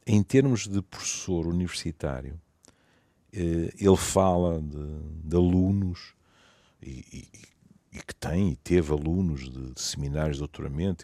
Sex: male